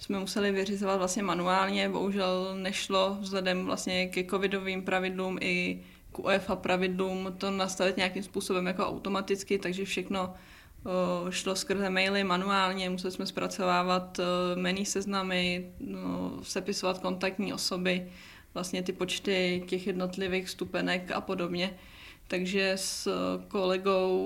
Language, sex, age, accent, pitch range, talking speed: Czech, female, 20-39, native, 185-195 Hz, 120 wpm